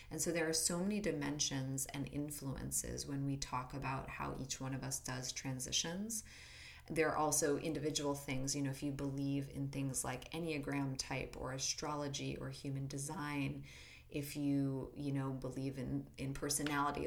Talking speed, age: 170 wpm, 20-39